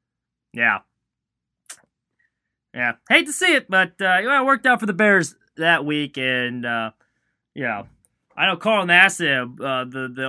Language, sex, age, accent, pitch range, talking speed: English, male, 20-39, American, 125-210 Hz, 175 wpm